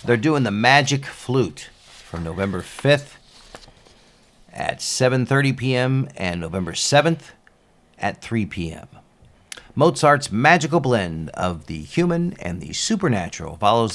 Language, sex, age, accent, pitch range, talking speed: English, male, 50-69, American, 105-145 Hz, 115 wpm